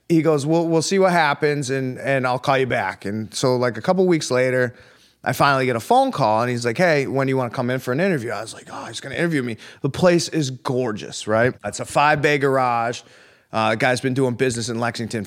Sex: male